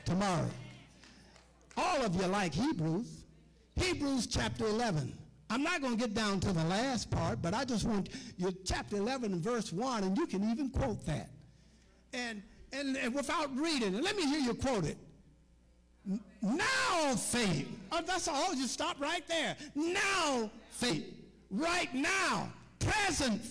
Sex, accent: male, American